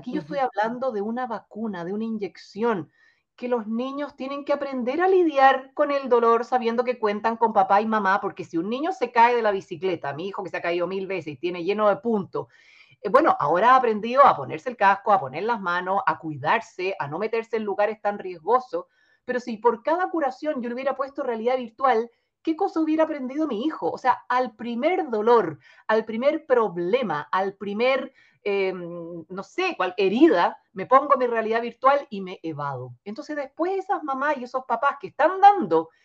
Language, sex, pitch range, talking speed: Spanish, female, 195-275 Hz, 200 wpm